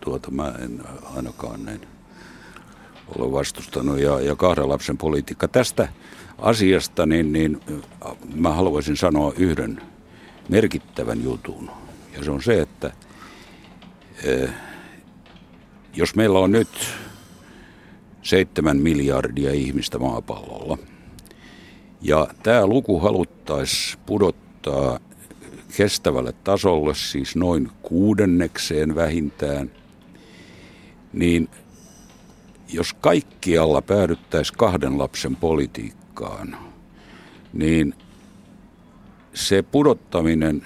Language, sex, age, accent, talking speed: Finnish, male, 60-79, native, 80 wpm